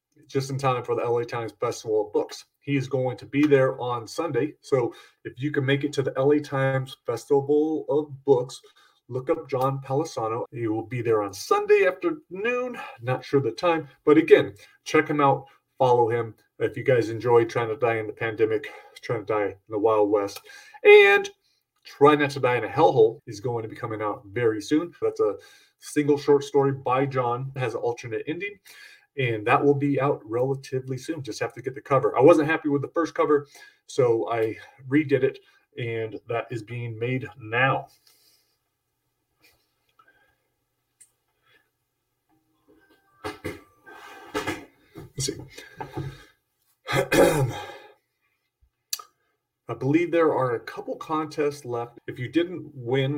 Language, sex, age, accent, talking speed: English, male, 30-49, American, 160 wpm